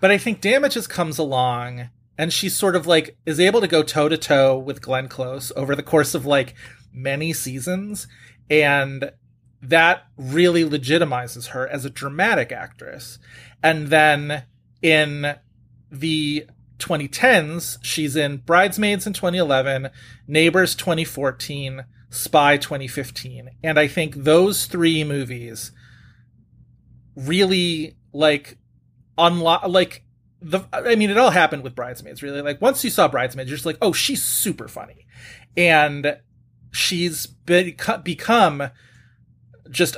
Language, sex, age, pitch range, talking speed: English, male, 30-49, 125-165 Hz, 130 wpm